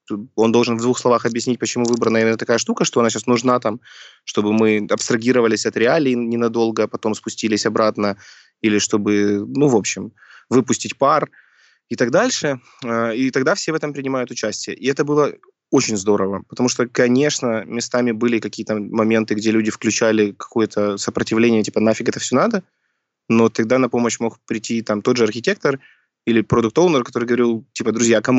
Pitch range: 110-125 Hz